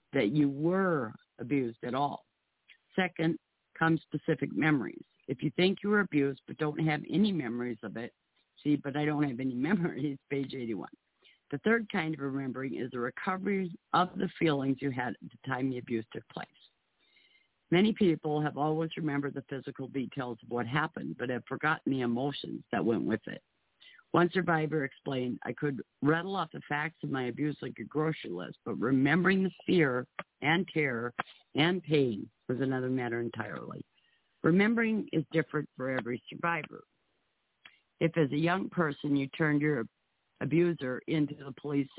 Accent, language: American, English